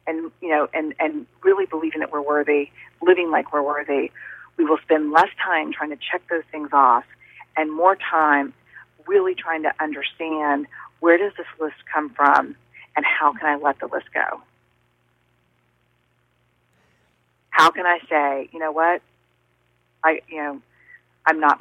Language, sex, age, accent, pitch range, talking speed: English, female, 40-59, American, 125-170 Hz, 160 wpm